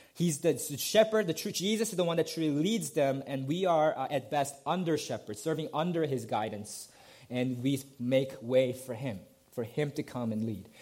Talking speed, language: 205 wpm, English